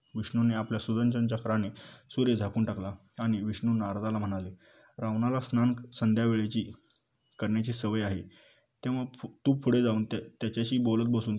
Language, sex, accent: Marathi, male, native